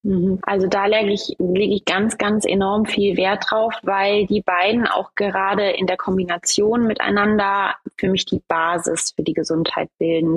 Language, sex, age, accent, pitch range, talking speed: German, female, 20-39, German, 180-205 Hz, 160 wpm